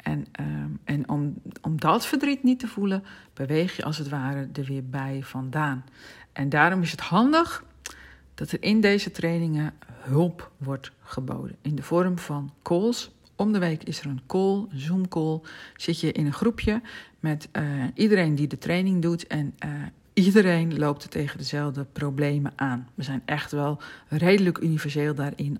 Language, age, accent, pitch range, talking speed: Dutch, 50-69, Dutch, 145-185 Hz, 175 wpm